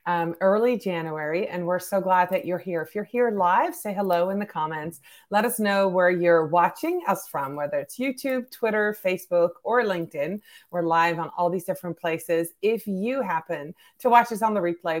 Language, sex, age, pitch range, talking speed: English, female, 30-49, 175-235 Hz, 200 wpm